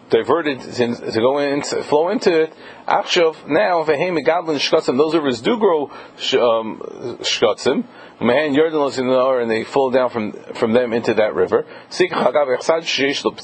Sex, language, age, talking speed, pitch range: male, English, 40-59, 145 wpm, 130-195 Hz